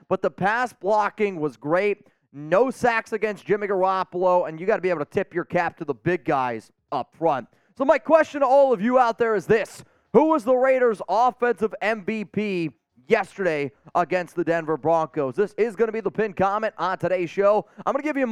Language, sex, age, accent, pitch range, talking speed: English, male, 20-39, American, 165-230 Hz, 215 wpm